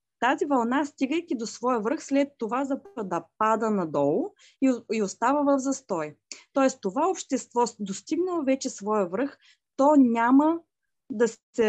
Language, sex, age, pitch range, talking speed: Bulgarian, female, 20-39, 195-275 Hz, 140 wpm